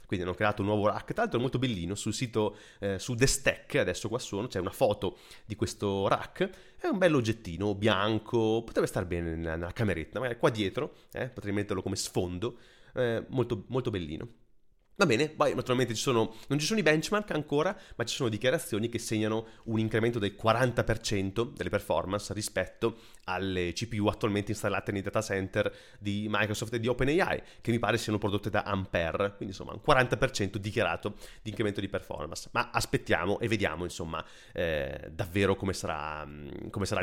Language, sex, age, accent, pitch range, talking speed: Italian, male, 30-49, native, 100-130 Hz, 175 wpm